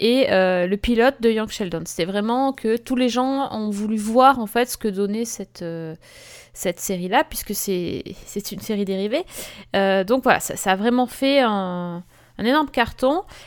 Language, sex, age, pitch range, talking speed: French, female, 30-49, 200-250 Hz, 190 wpm